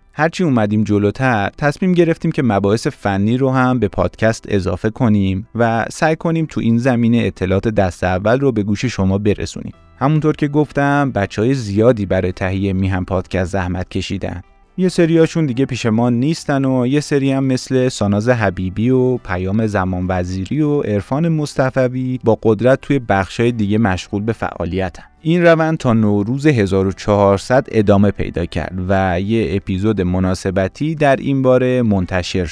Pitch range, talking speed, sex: 95-130 Hz, 155 wpm, male